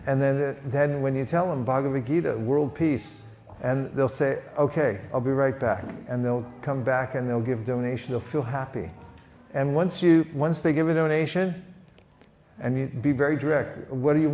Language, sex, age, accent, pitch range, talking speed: English, male, 50-69, American, 125-155 Hz, 195 wpm